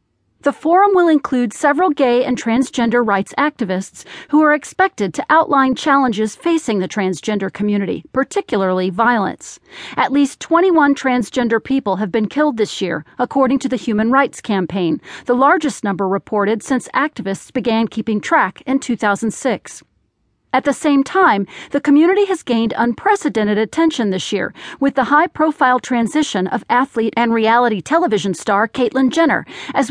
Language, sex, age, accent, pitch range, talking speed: English, female, 40-59, American, 220-295 Hz, 150 wpm